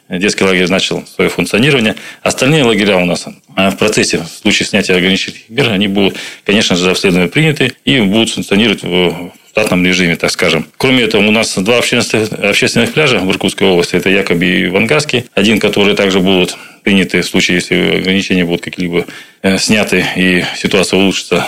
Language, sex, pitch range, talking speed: Russian, male, 95-105 Hz, 165 wpm